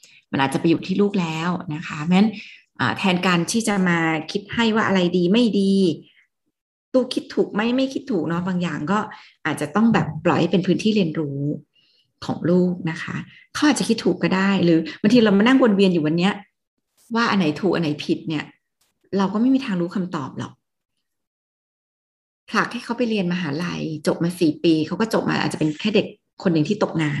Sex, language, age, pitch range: female, Thai, 30-49, 160-200 Hz